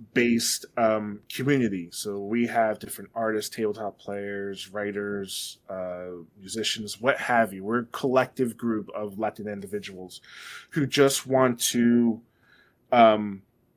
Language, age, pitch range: English, 20-39, 110-130 Hz